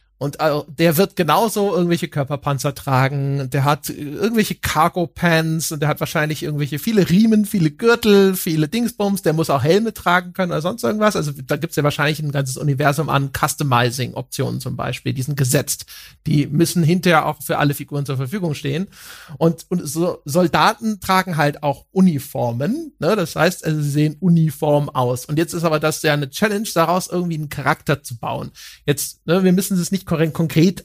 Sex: male